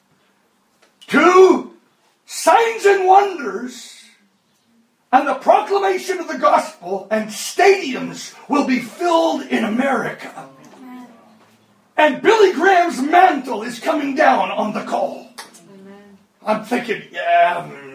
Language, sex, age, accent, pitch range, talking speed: English, male, 40-59, American, 225-320 Hz, 100 wpm